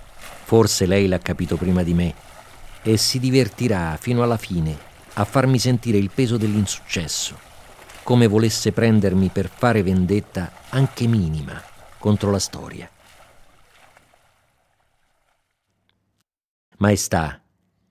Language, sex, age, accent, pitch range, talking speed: Italian, male, 50-69, native, 90-110 Hz, 105 wpm